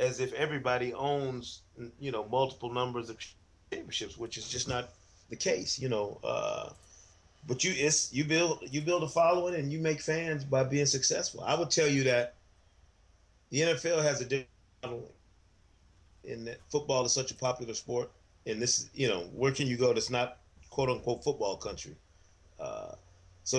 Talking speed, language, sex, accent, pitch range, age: 180 wpm, English, male, American, 95-135 Hz, 30-49